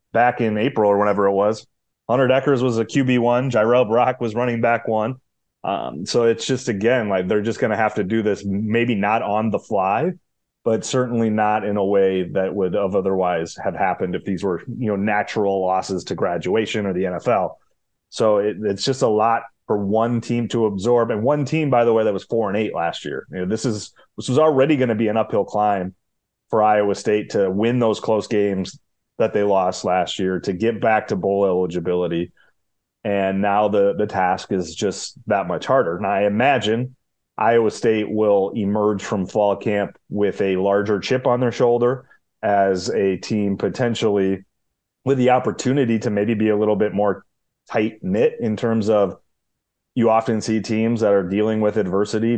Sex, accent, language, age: male, American, English, 30-49